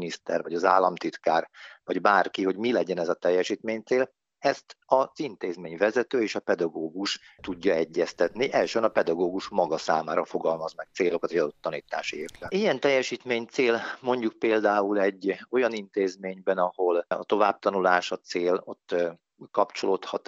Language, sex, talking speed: Hungarian, male, 135 wpm